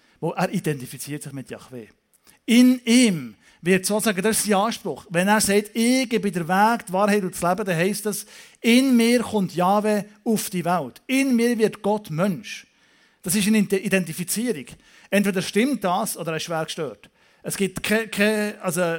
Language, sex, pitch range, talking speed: German, male, 160-215 Hz, 180 wpm